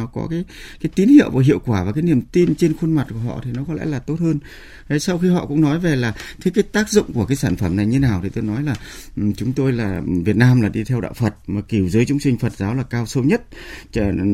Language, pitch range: Vietnamese, 105-145 Hz